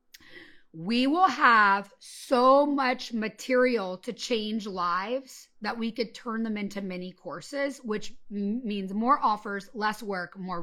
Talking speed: 135 wpm